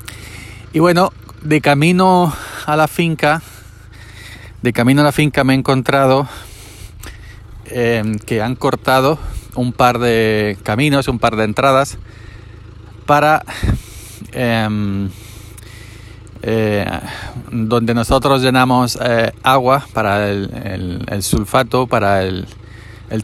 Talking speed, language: 110 wpm, Spanish